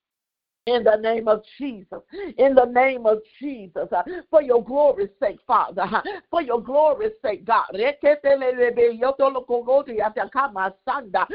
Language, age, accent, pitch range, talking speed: English, 50-69, American, 235-315 Hz, 105 wpm